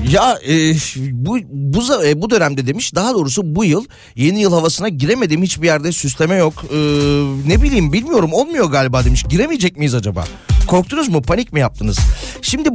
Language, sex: Turkish, male